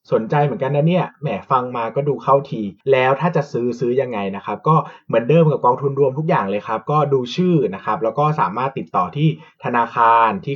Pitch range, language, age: 110-155 Hz, Thai, 20-39